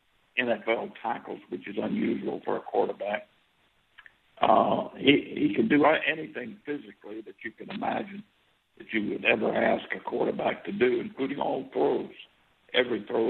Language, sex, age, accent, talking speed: English, male, 60-79, American, 150 wpm